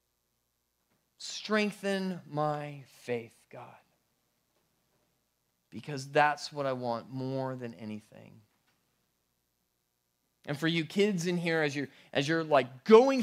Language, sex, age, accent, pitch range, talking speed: English, male, 30-49, American, 130-205 Hz, 110 wpm